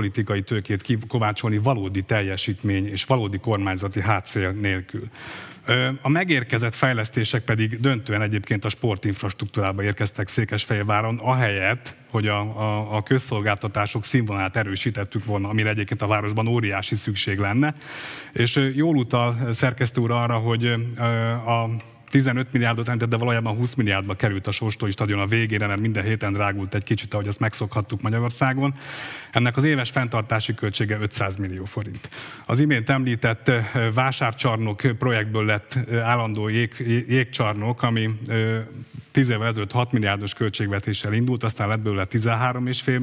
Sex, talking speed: male, 130 wpm